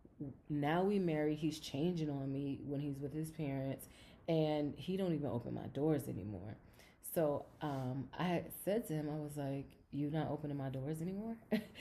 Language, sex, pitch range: English, female, 145-180 Hz